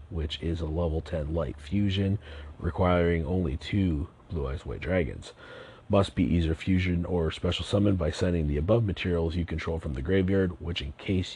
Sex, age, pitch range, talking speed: male, 40-59, 80-100 Hz, 180 wpm